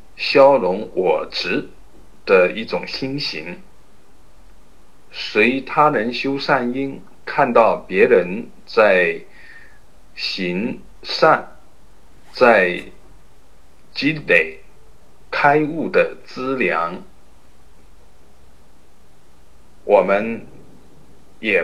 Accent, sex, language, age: native, male, Chinese, 50-69